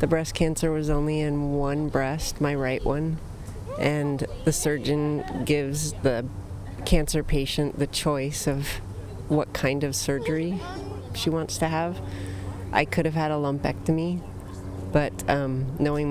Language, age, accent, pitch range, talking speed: English, 30-49, American, 100-145 Hz, 140 wpm